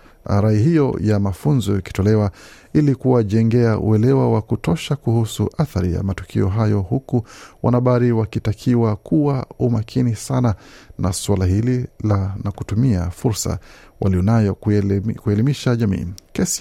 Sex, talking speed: male, 115 wpm